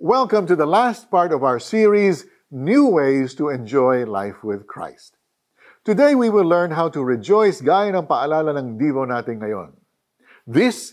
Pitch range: 135-190 Hz